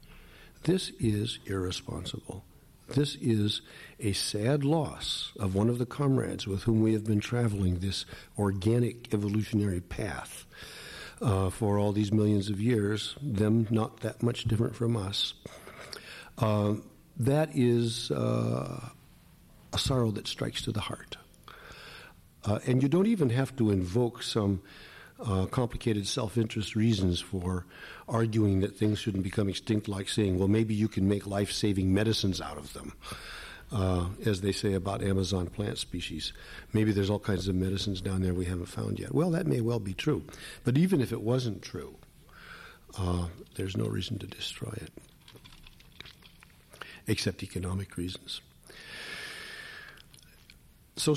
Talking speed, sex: 145 wpm, male